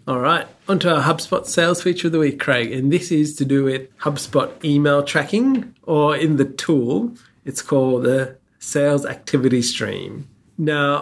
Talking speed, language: 175 wpm, English